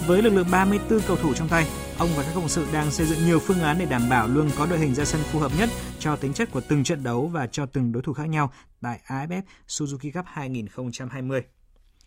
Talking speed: 250 wpm